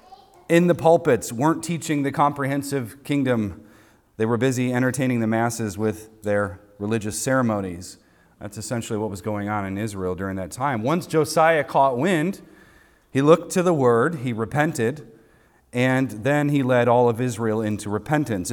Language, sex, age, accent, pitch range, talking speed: English, male, 40-59, American, 110-150 Hz, 160 wpm